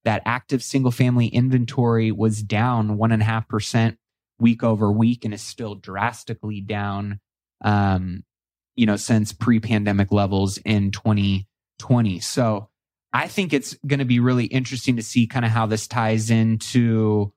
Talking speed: 160 wpm